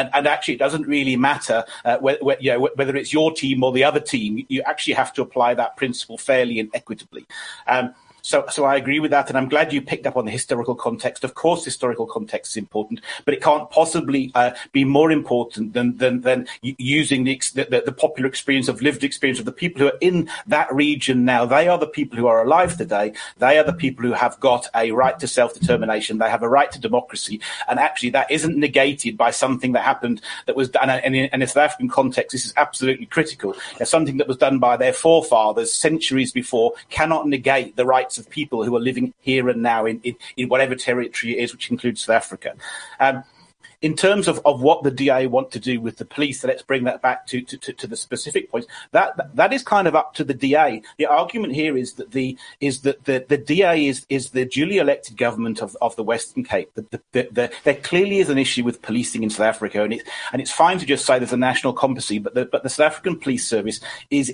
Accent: British